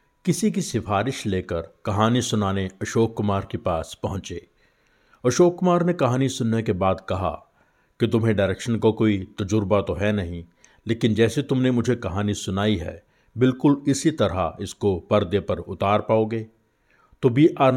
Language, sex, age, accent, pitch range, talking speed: Hindi, male, 50-69, native, 100-115 Hz, 155 wpm